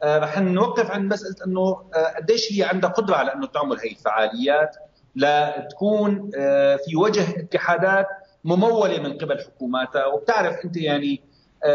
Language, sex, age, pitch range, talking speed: Arabic, male, 40-59, 155-205 Hz, 130 wpm